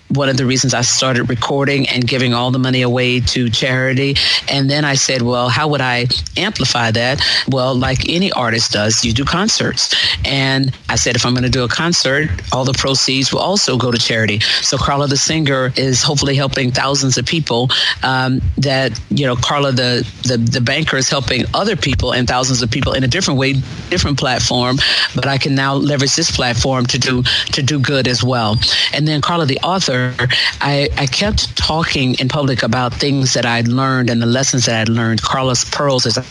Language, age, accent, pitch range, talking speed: English, 40-59, American, 125-145 Hz, 205 wpm